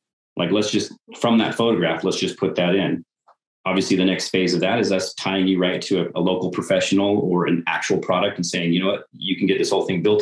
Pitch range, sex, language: 85-95 Hz, male, English